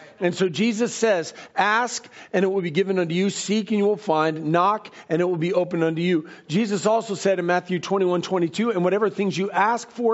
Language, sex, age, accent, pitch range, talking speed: English, male, 40-59, American, 175-225 Hz, 225 wpm